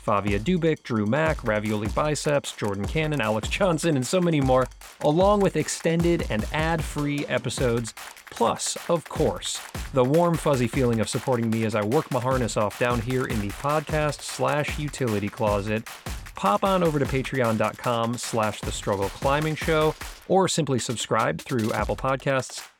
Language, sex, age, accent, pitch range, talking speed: English, male, 30-49, American, 115-155 Hz, 160 wpm